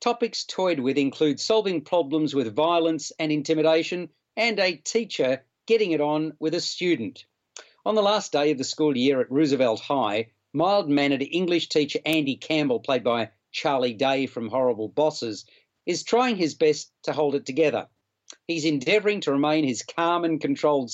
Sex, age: male, 40-59